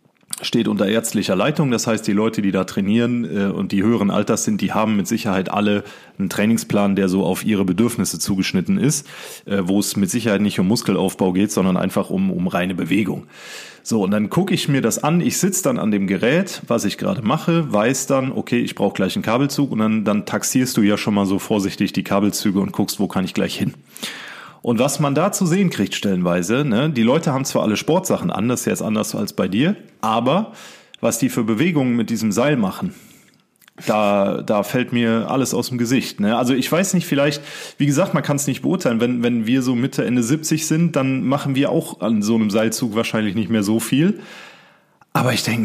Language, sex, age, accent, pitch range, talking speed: German, male, 30-49, German, 100-140 Hz, 215 wpm